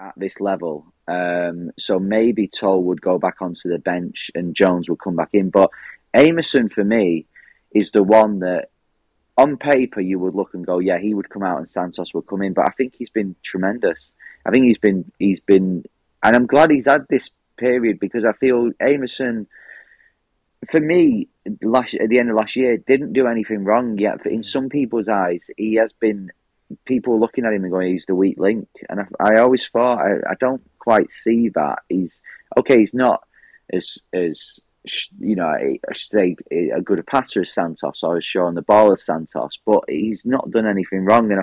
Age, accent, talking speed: 30-49, British, 200 wpm